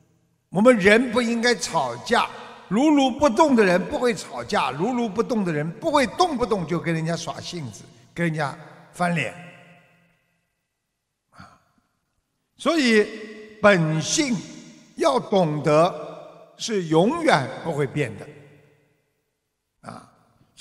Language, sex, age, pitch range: Chinese, male, 50-69, 155-235 Hz